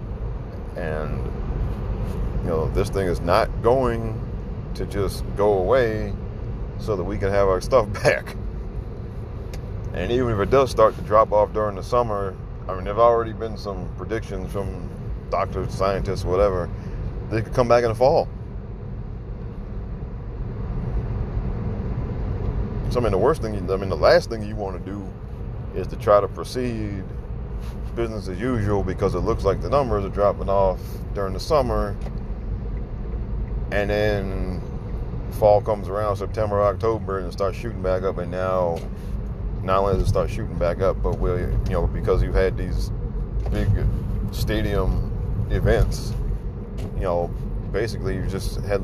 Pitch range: 95-115 Hz